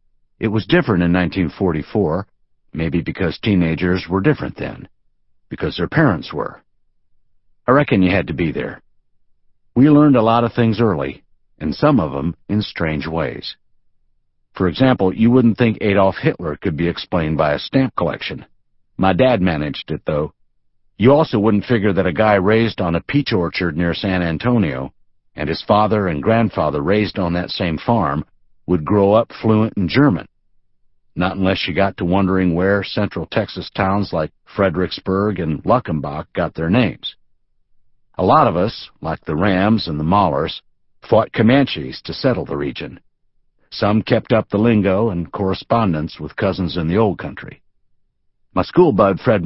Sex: male